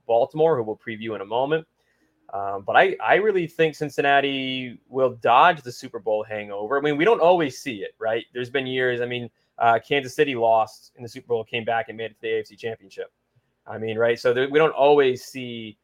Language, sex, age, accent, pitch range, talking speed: English, male, 20-39, American, 115-150 Hz, 220 wpm